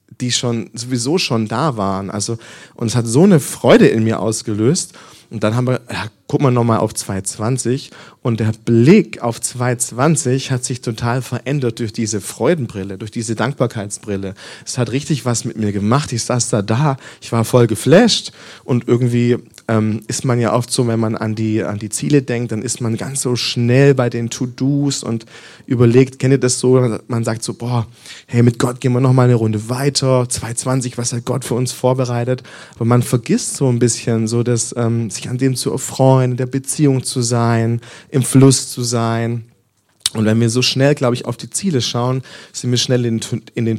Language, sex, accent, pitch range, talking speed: English, male, German, 115-130 Hz, 205 wpm